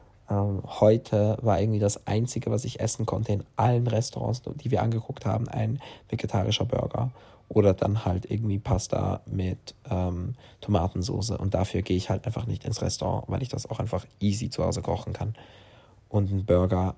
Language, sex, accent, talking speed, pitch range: German, male, German, 175 wpm, 100-115 Hz